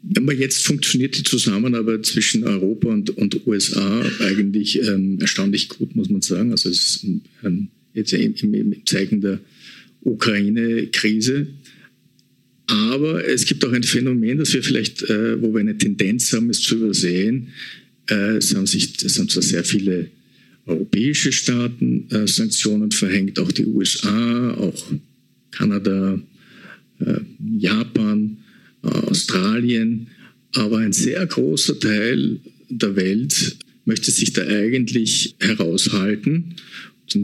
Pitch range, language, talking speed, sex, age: 105-155 Hz, German, 130 wpm, male, 50-69